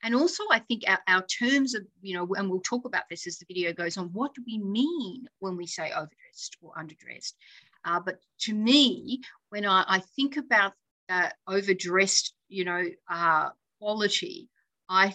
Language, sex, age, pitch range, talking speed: English, female, 50-69, 185-260 Hz, 180 wpm